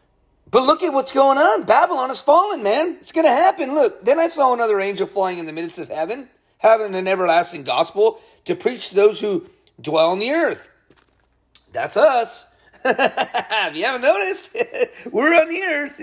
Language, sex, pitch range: English, male, 185-285 Hz